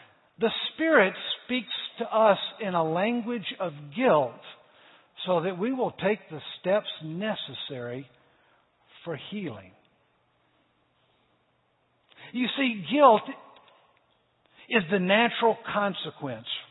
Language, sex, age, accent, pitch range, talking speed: English, male, 60-79, American, 160-230 Hz, 95 wpm